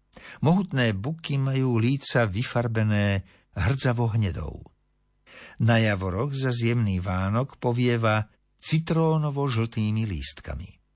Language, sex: Slovak, male